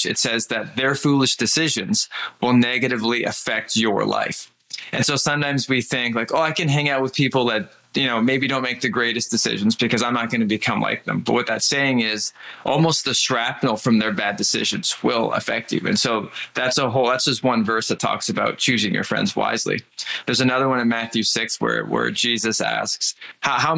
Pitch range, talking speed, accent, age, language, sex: 115-135 Hz, 210 wpm, American, 20-39, English, male